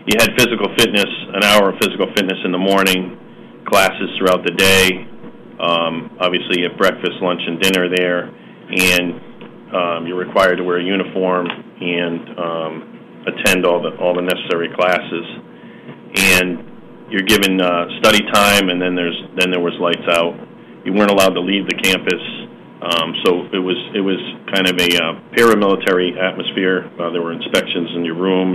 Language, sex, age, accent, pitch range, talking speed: English, male, 40-59, American, 85-95 Hz, 170 wpm